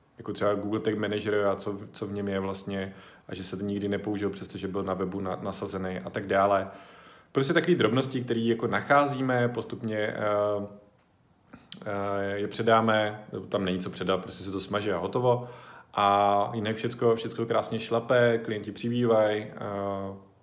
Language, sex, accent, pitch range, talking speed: Czech, male, native, 100-115 Hz, 160 wpm